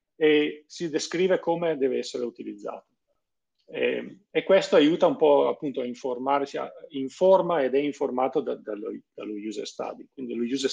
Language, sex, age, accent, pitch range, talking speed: Italian, male, 40-59, native, 125-185 Hz, 145 wpm